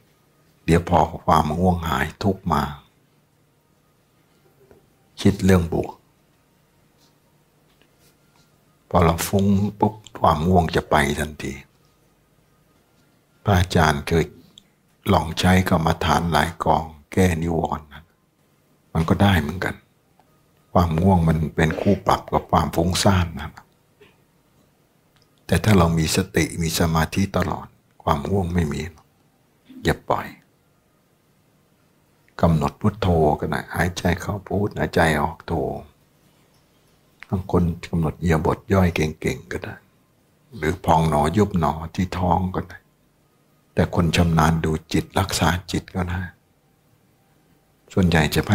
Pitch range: 80-100 Hz